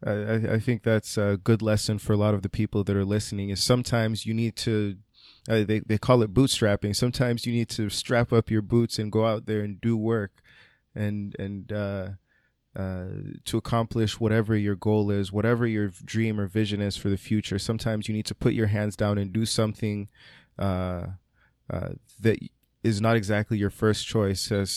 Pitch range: 100-110 Hz